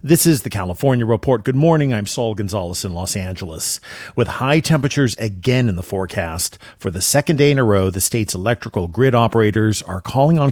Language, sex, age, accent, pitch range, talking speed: English, male, 40-59, American, 95-120 Hz, 200 wpm